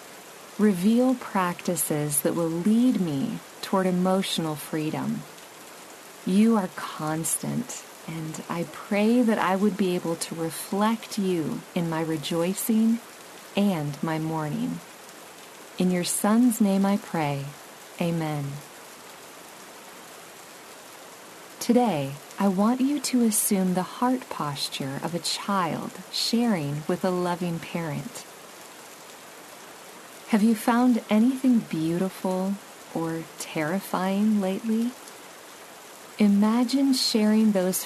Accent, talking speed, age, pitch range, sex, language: American, 100 wpm, 40-59, 165-215 Hz, female, English